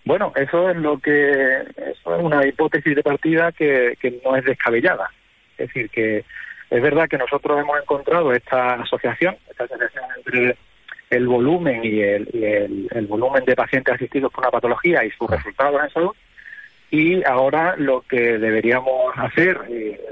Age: 30-49